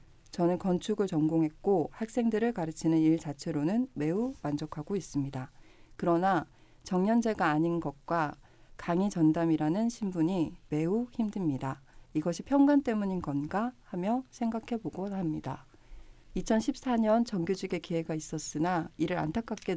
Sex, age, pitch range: female, 40-59, 155-205 Hz